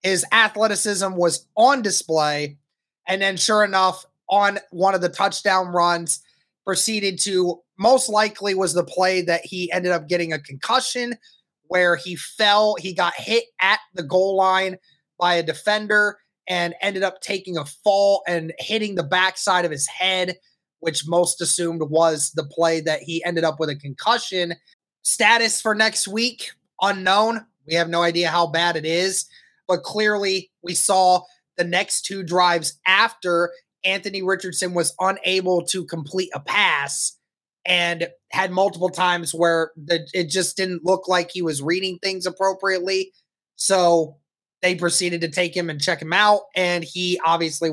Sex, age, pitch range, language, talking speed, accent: male, 20-39, 170-195 Hz, English, 160 wpm, American